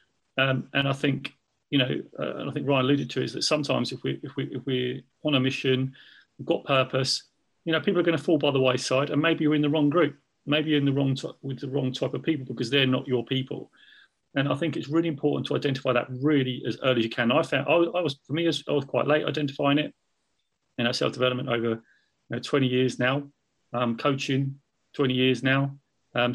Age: 40-59